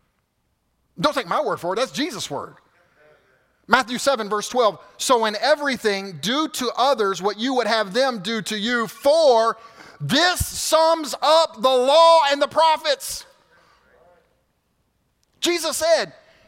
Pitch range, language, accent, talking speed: 170-260 Hz, English, American, 140 wpm